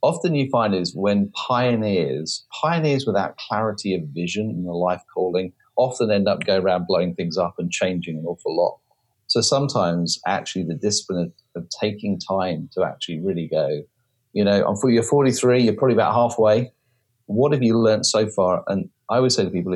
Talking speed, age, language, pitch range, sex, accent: 190 wpm, 40-59, English, 90-120 Hz, male, British